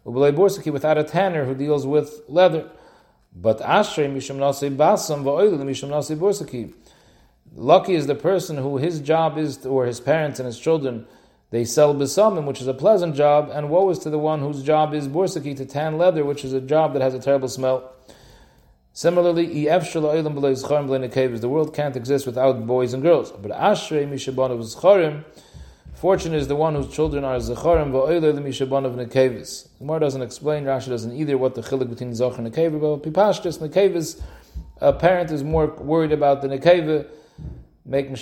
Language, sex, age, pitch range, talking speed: English, male, 40-59, 130-155 Hz, 155 wpm